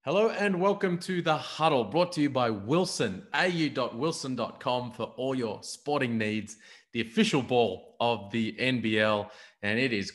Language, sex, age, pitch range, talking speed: English, male, 30-49, 115-155 Hz, 160 wpm